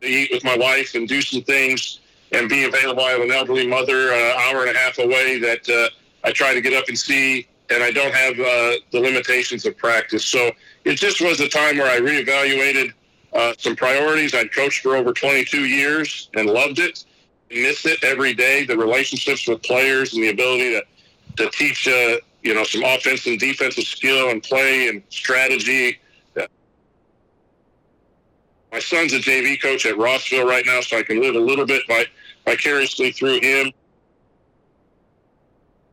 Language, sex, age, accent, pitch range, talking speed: English, male, 50-69, American, 125-140 Hz, 185 wpm